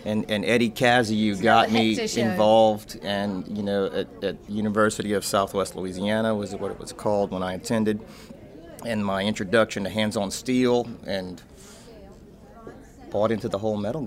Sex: male